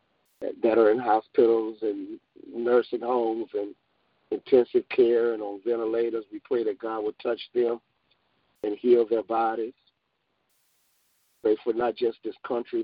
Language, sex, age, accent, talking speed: English, male, 50-69, American, 140 wpm